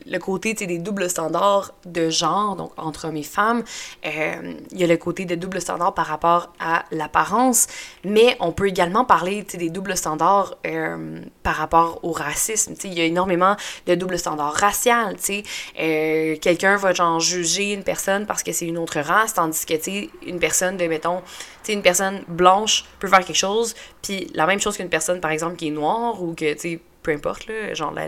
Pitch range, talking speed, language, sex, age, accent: 160-195 Hz, 185 wpm, French, female, 20-39, Canadian